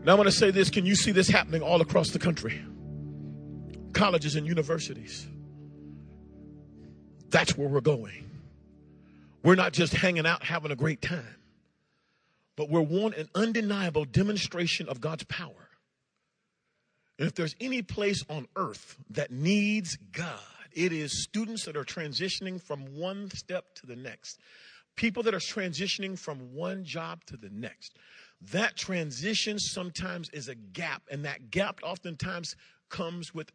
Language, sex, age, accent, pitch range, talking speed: English, male, 40-59, American, 145-200 Hz, 145 wpm